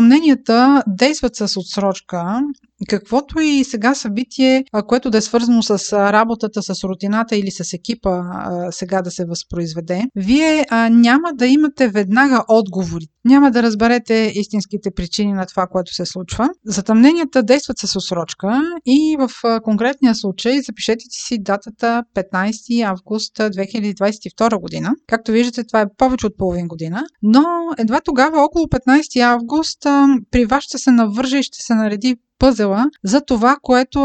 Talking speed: 140 wpm